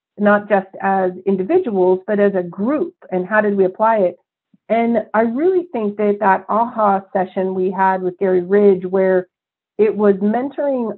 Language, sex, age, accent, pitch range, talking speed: English, female, 40-59, American, 190-220 Hz, 170 wpm